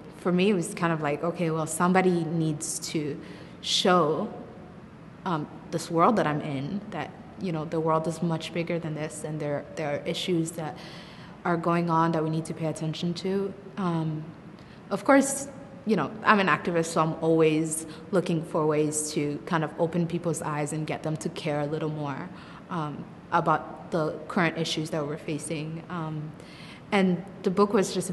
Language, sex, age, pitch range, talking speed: English, female, 20-39, 155-175 Hz, 185 wpm